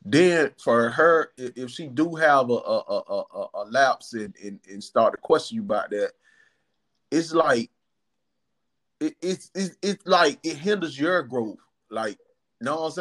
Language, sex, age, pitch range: English, male, 30-49, 125-175 Hz